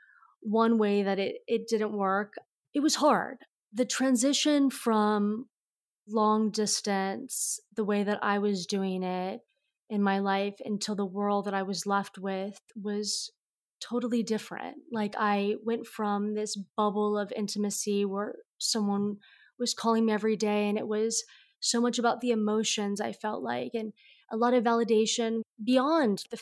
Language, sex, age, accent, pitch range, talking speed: English, female, 20-39, American, 210-240 Hz, 155 wpm